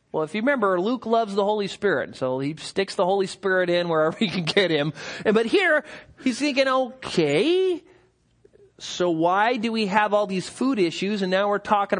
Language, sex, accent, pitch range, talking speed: English, male, American, 160-230 Hz, 195 wpm